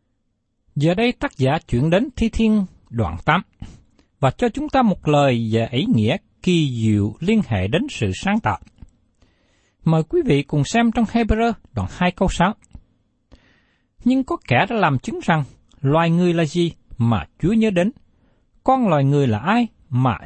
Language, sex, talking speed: Vietnamese, male, 175 wpm